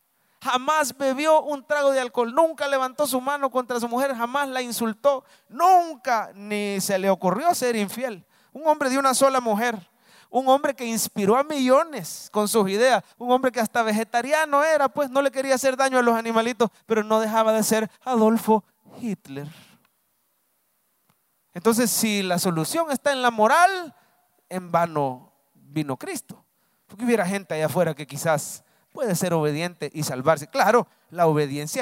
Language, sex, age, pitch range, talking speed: English, male, 30-49, 185-255 Hz, 165 wpm